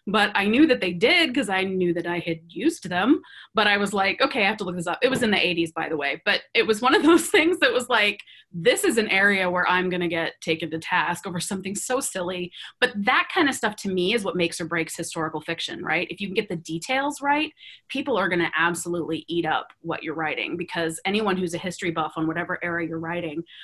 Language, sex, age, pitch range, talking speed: English, female, 20-39, 170-210 Hz, 260 wpm